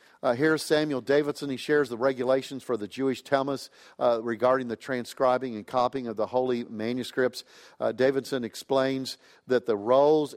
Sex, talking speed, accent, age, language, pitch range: male, 170 wpm, American, 50-69, English, 120-145 Hz